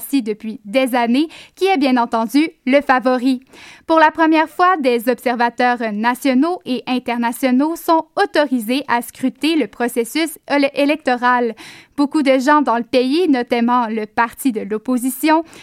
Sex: female